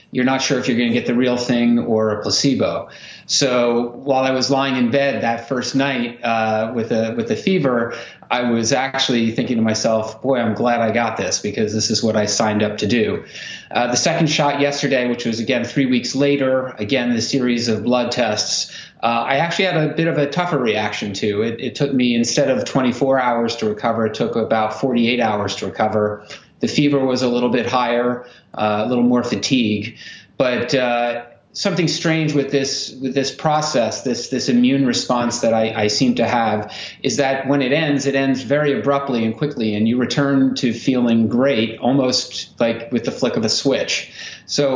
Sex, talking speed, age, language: male, 205 wpm, 30-49, English